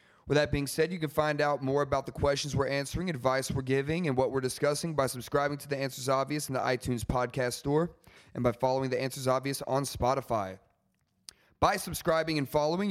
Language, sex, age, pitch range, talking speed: English, male, 30-49, 125-145 Hz, 205 wpm